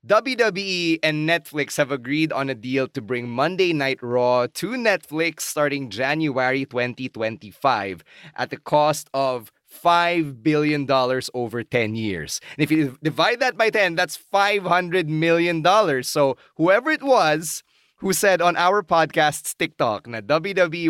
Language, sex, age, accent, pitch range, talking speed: English, male, 20-39, Filipino, 135-165 Hz, 140 wpm